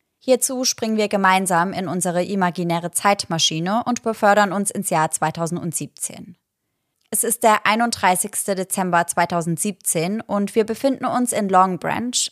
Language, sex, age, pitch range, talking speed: German, female, 20-39, 175-220 Hz, 130 wpm